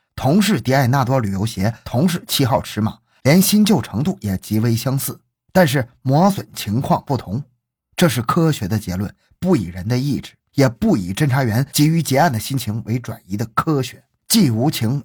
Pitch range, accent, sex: 110-170 Hz, native, male